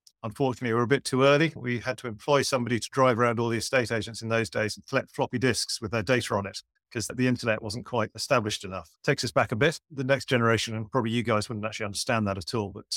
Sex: male